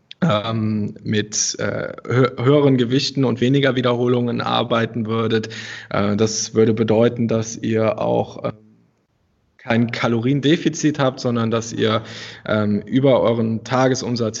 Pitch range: 110-125 Hz